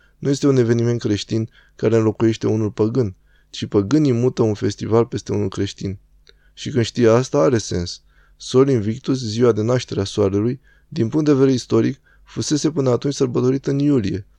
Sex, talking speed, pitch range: male, 170 wpm, 105-125 Hz